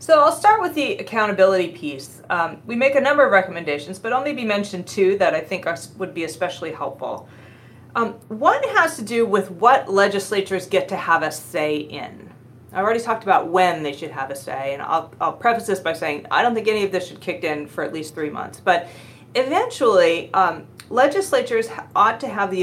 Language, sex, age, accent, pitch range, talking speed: English, female, 30-49, American, 155-235 Hz, 210 wpm